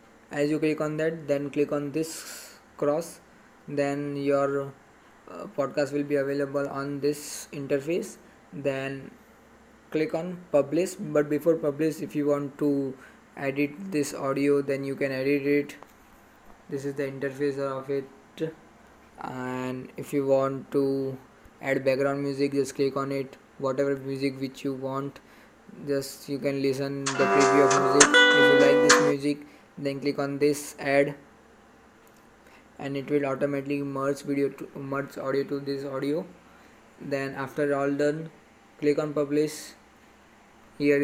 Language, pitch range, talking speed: English, 135-145 Hz, 145 wpm